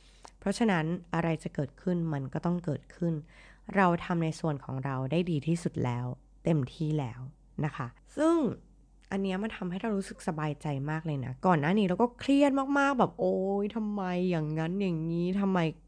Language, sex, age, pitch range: Thai, female, 20-39, 145-190 Hz